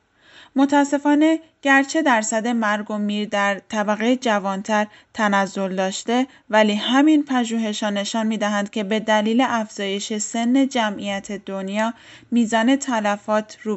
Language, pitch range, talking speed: Persian, 205-255 Hz, 115 wpm